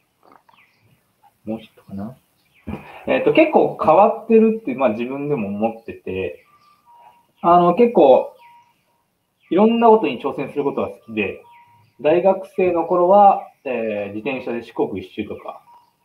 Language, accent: Japanese, native